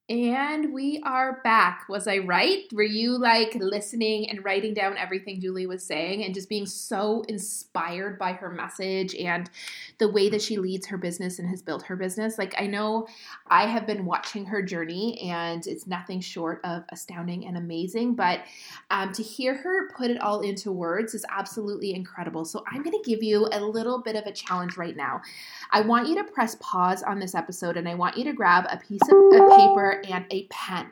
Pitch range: 185-230 Hz